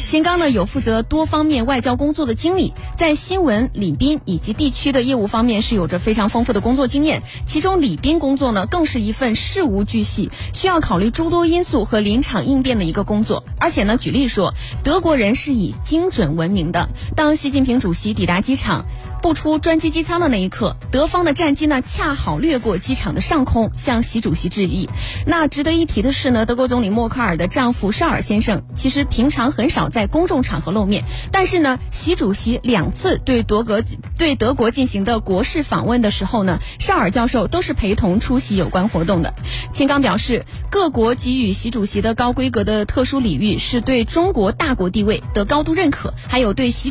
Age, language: 20-39, Chinese